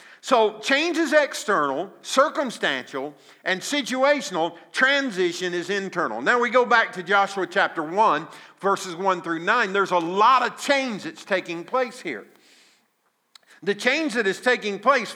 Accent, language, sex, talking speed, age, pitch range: American, English, male, 145 wpm, 50-69, 170-220 Hz